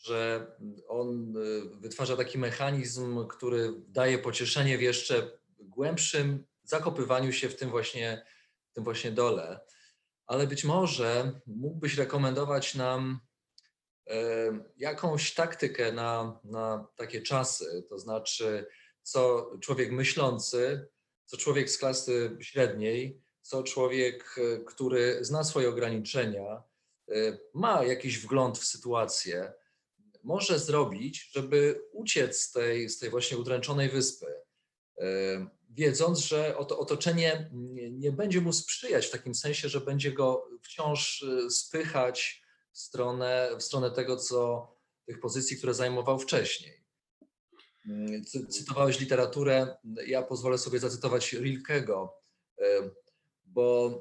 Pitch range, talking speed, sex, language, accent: 120-145 Hz, 105 wpm, male, Polish, native